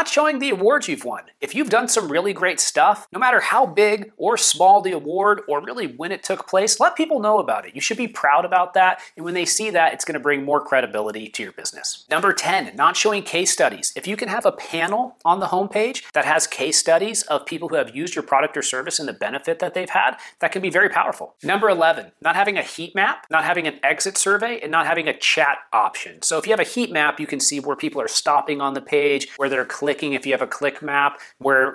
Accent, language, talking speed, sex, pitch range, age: American, English, 255 wpm, male, 135-195 Hz, 30-49